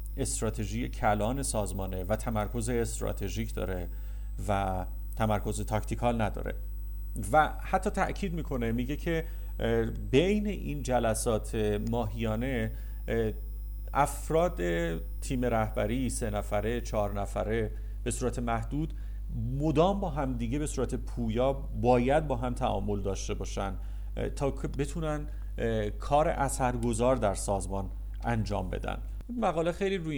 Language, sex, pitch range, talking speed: Persian, male, 100-125 Hz, 110 wpm